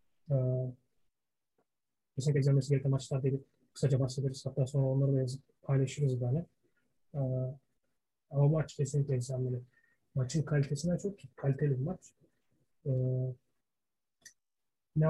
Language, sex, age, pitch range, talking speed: Turkish, male, 30-49, 135-155 Hz, 105 wpm